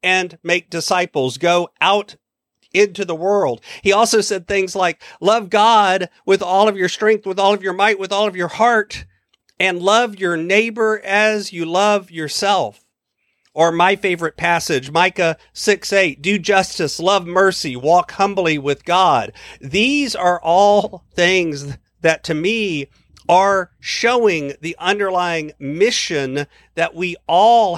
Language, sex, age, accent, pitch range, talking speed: English, male, 50-69, American, 160-200 Hz, 145 wpm